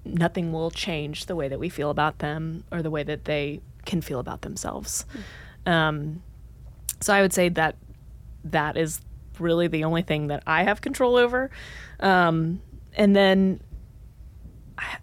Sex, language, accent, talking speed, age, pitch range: female, English, American, 160 wpm, 20-39, 155-180 Hz